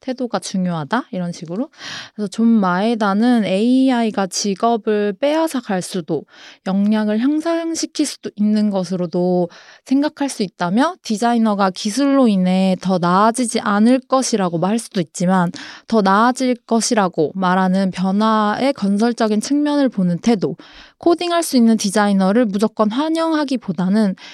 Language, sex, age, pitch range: Korean, female, 20-39, 190-275 Hz